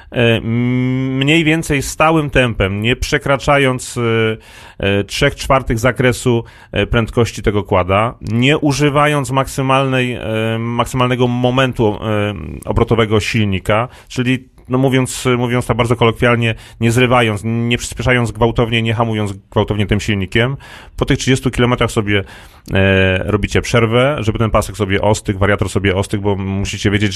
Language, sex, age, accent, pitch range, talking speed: Polish, male, 30-49, native, 105-125 Hz, 125 wpm